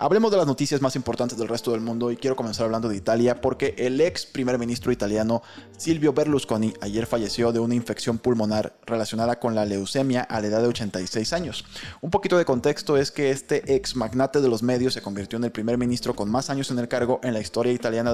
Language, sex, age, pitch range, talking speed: Spanish, male, 20-39, 115-135 Hz, 225 wpm